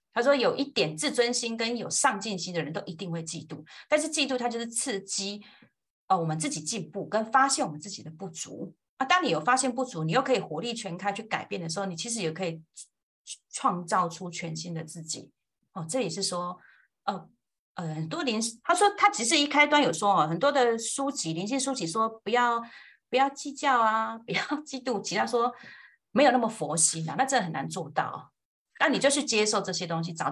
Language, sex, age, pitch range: Chinese, female, 30-49, 170-260 Hz